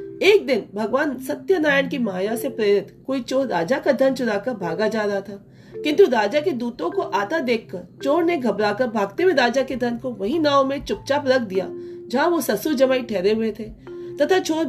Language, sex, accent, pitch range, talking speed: Hindi, female, native, 230-310 Hz, 60 wpm